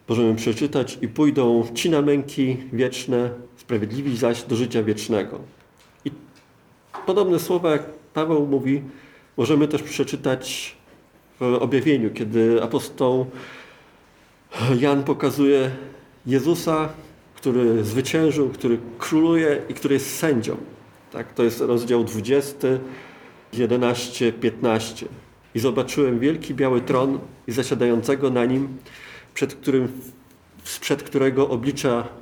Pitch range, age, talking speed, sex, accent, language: 115-140 Hz, 40-59, 110 wpm, male, native, Polish